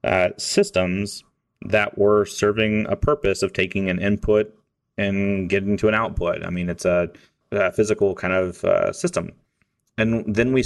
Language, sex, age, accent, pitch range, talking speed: English, male, 30-49, American, 95-110 Hz, 165 wpm